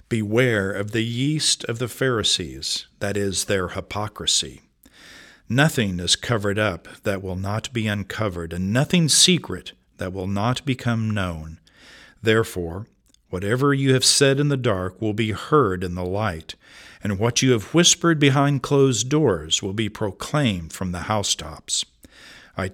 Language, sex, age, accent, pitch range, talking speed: English, male, 50-69, American, 95-130 Hz, 150 wpm